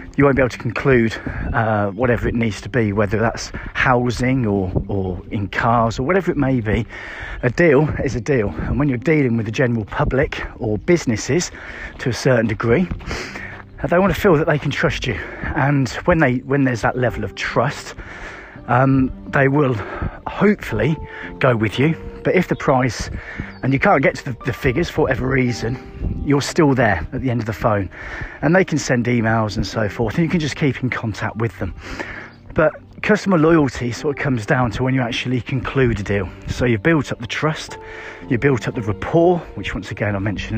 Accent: British